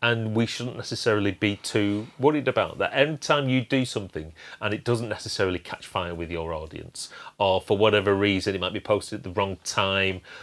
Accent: British